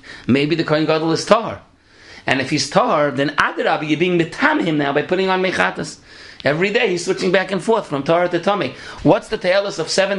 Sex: male